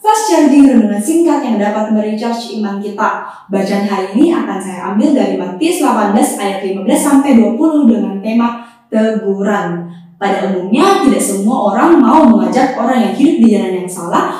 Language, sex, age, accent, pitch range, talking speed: Indonesian, female, 10-29, native, 205-295 Hz, 165 wpm